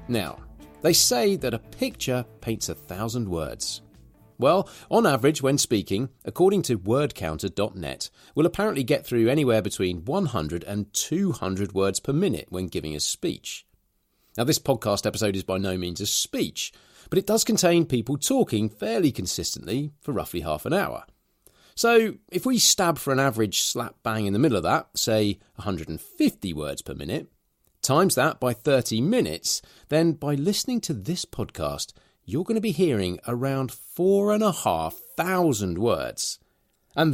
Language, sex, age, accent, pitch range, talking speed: English, male, 40-59, British, 105-170 Hz, 160 wpm